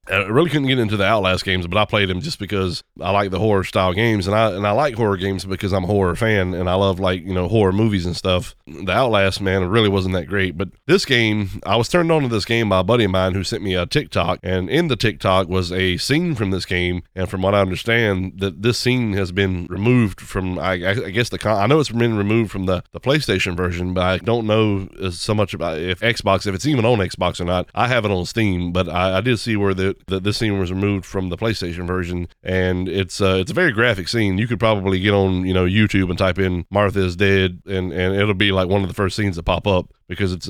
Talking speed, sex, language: 265 wpm, male, English